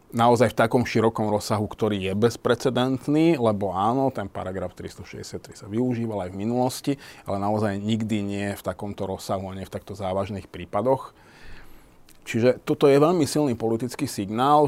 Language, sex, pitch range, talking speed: Slovak, male, 95-115 Hz, 150 wpm